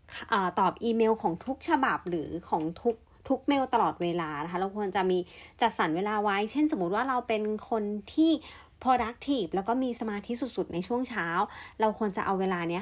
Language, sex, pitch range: Thai, female, 190-260 Hz